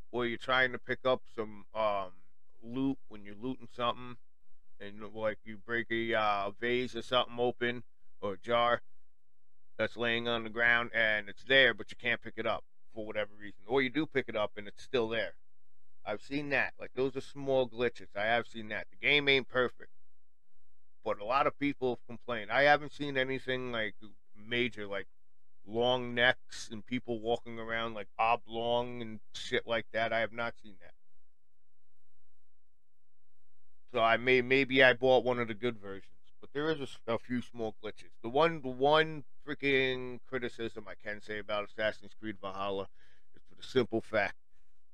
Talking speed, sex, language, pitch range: 180 wpm, male, English, 95-125 Hz